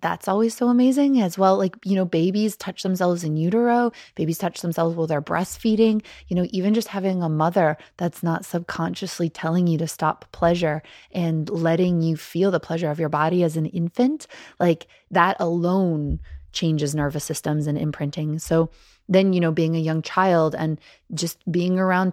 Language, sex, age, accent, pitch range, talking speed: English, female, 20-39, American, 160-195 Hz, 180 wpm